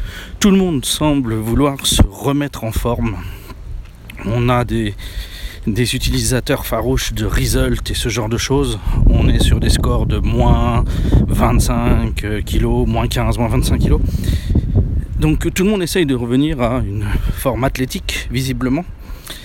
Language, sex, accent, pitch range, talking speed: French, male, French, 90-135 Hz, 150 wpm